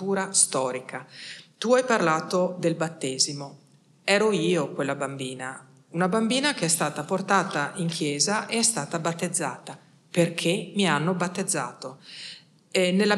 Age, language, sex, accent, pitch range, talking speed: 40-59, Italian, female, native, 150-190 Hz, 125 wpm